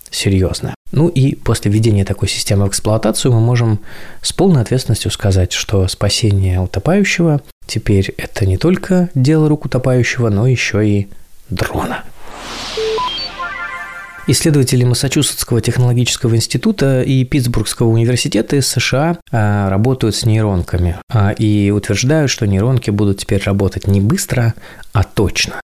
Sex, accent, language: male, native, Russian